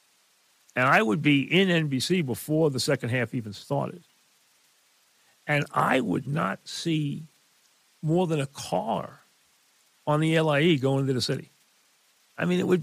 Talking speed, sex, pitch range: 150 wpm, male, 130-165 Hz